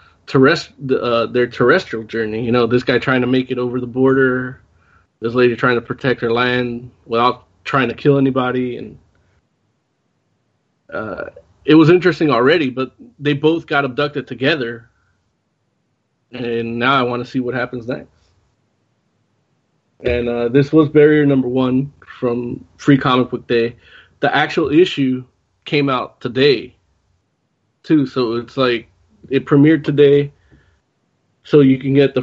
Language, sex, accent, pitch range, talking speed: English, male, American, 120-140 Hz, 145 wpm